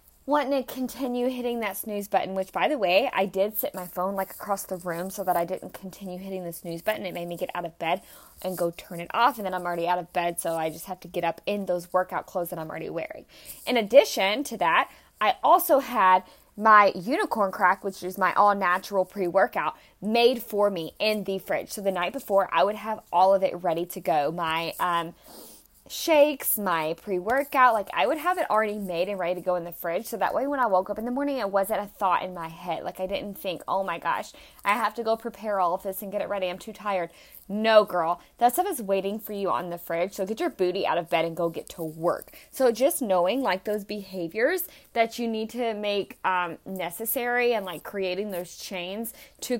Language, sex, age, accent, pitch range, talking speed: English, female, 20-39, American, 180-225 Hz, 240 wpm